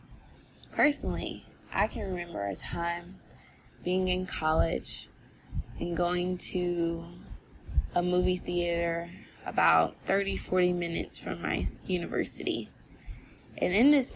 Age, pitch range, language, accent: 20-39, 165-185 Hz, English, American